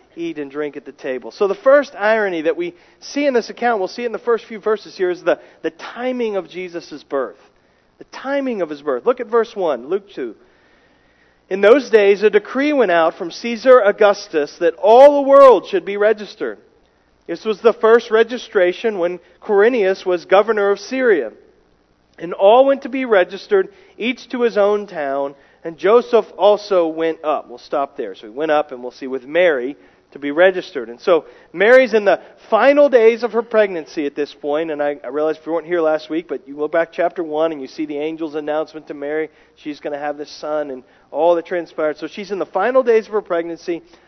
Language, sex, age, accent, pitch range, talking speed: English, male, 40-59, American, 160-235 Hz, 215 wpm